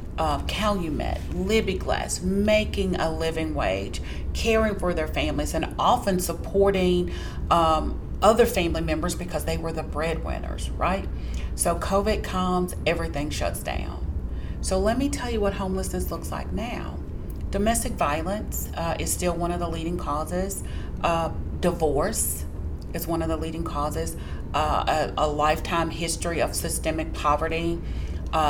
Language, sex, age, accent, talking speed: English, female, 40-59, American, 145 wpm